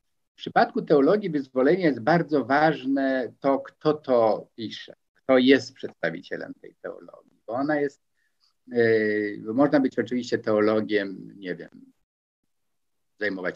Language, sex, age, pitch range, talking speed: Polish, male, 50-69, 110-145 Hz, 125 wpm